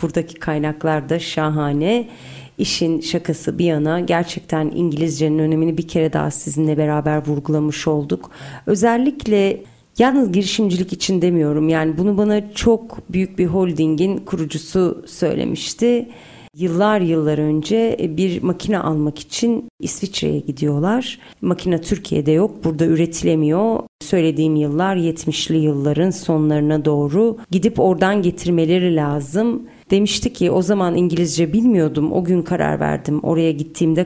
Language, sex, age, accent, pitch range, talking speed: Turkish, female, 40-59, native, 155-185 Hz, 120 wpm